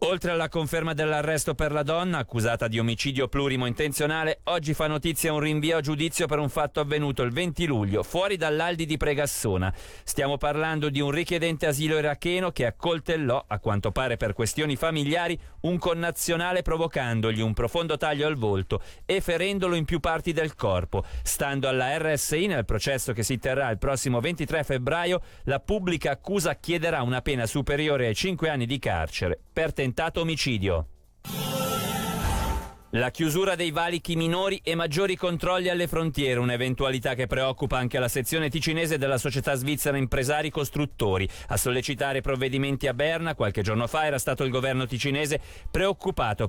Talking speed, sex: 155 wpm, male